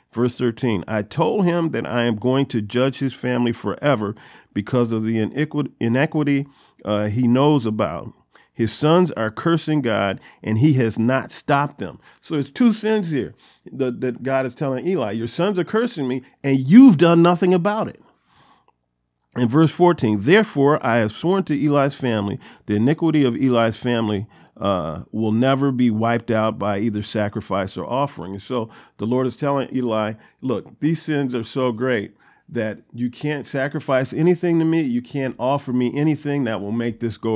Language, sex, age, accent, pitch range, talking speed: English, male, 40-59, American, 110-145 Hz, 175 wpm